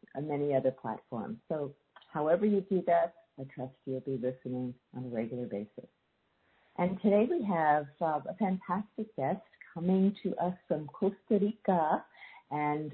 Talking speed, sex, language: 155 wpm, female, English